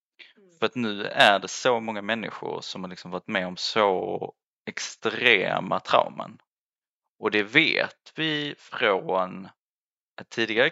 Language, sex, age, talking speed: Swedish, male, 20-39, 135 wpm